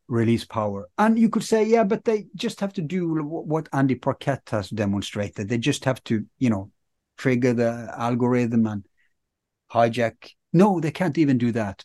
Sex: male